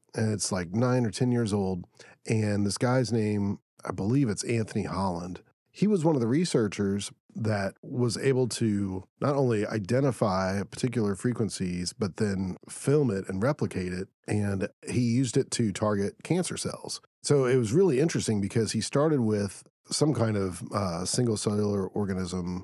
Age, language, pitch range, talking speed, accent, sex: 40-59, English, 100-130 Hz, 165 wpm, American, male